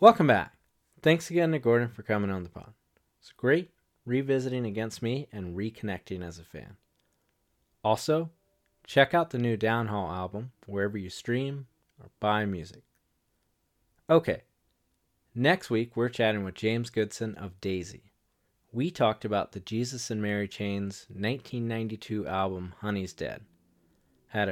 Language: English